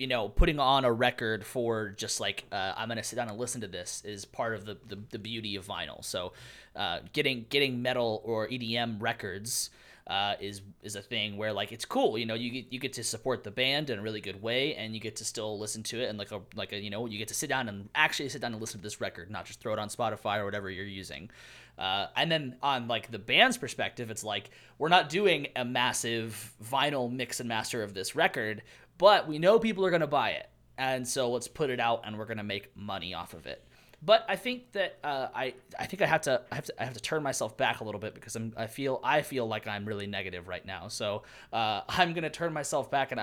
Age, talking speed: 20-39, 260 wpm